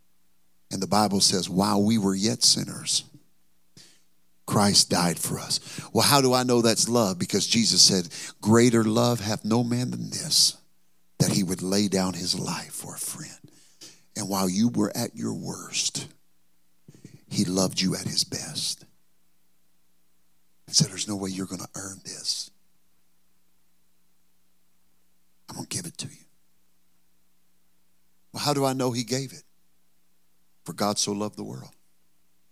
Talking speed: 155 wpm